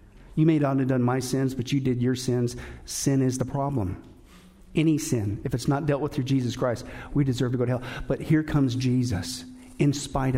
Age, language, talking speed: 50-69, English, 220 wpm